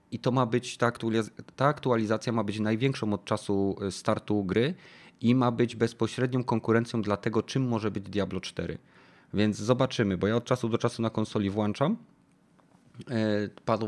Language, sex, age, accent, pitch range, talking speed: Polish, male, 30-49, native, 110-130 Hz, 160 wpm